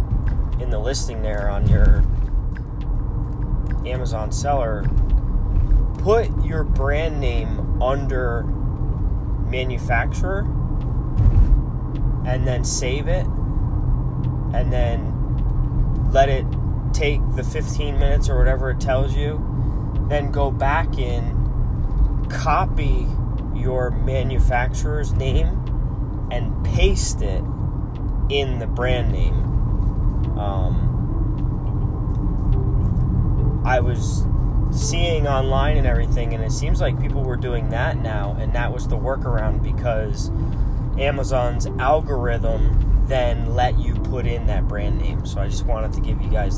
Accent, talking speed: American, 110 wpm